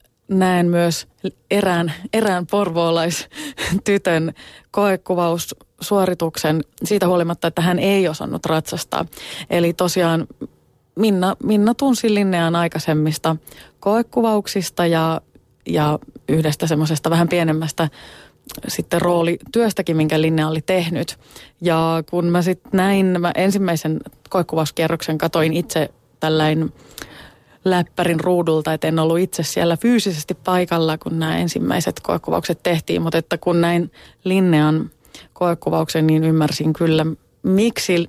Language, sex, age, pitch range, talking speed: Finnish, female, 30-49, 160-180 Hz, 105 wpm